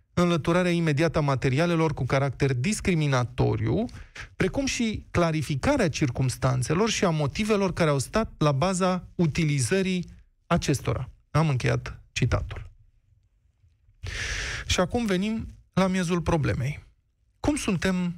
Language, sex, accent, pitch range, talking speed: Romanian, male, native, 130-175 Hz, 105 wpm